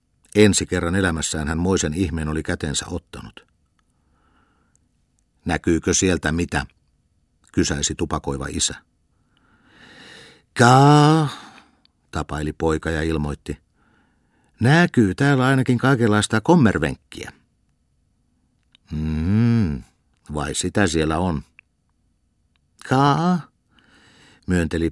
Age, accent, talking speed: 50-69, native, 75 wpm